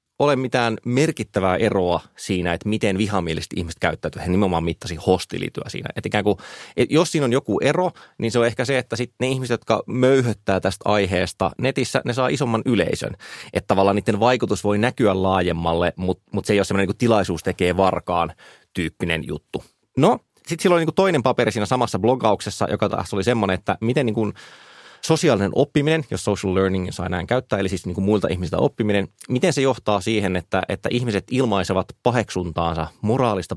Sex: male